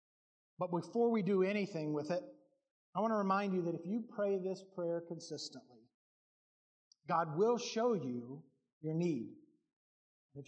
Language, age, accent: English, 40-59, American